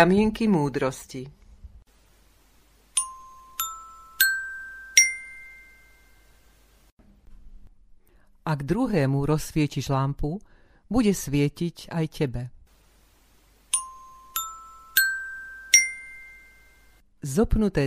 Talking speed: 35 wpm